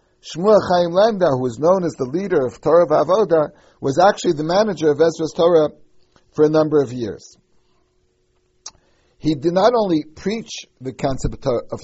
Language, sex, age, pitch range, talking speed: English, male, 60-79, 140-175 Hz, 155 wpm